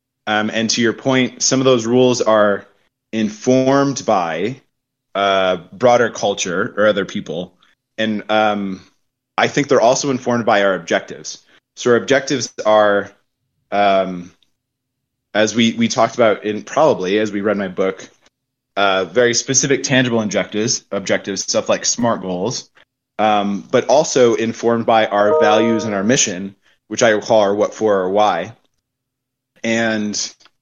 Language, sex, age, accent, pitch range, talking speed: English, male, 20-39, American, 105-130 Hz, 145 wpm